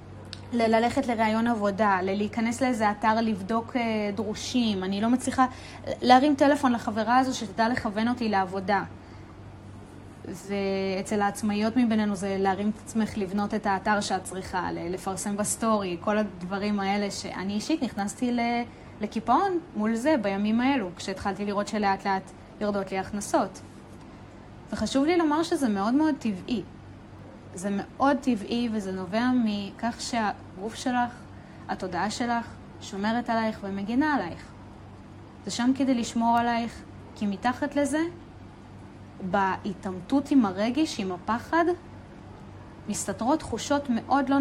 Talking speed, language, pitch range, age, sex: 120 wpm, Hebrew, 190-245 Hz, 20-39, female